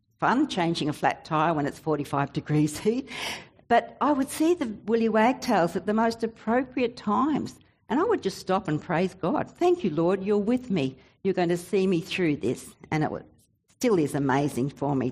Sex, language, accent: female, English, Australian